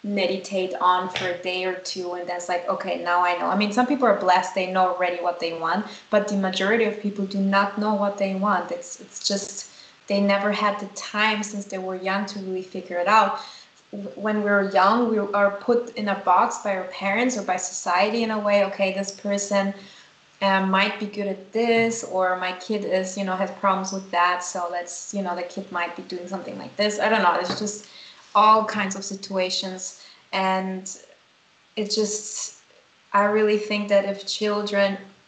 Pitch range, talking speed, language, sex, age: 185-205 Hz, 205 wpm, English, female, 20-39